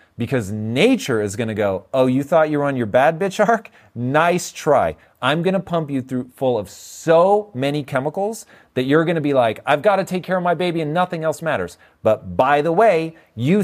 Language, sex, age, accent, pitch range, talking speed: English, male, 40-59, American, 125-200 Hz, 230 wpm